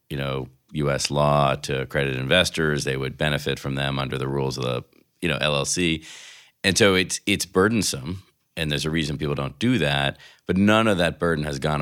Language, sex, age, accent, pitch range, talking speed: English, male, 40-59, American, 70-80 Hz, 205 wpm